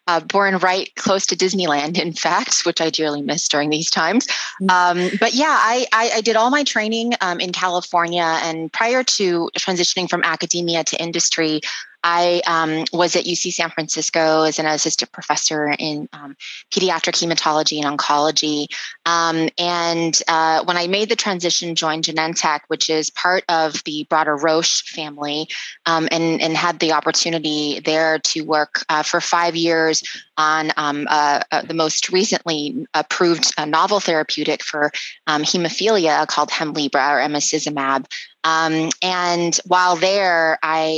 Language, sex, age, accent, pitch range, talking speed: English, female, 20-39, American, 155-180 Hz, 155 wpm